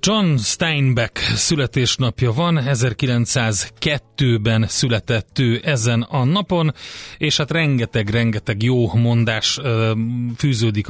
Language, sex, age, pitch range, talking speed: Hungarian, male, 30-49, 110-135 Hz, 90 wpm